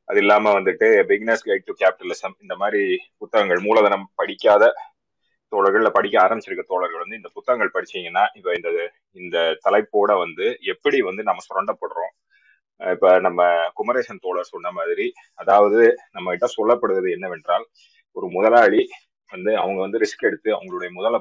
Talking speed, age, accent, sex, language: 135 wpm, 30-49, native, male, Tamil